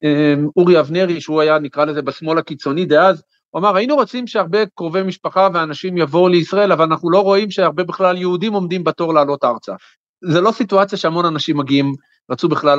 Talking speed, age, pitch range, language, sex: 180 wpm, 50-69, 150-200 Hz, Hebrew, male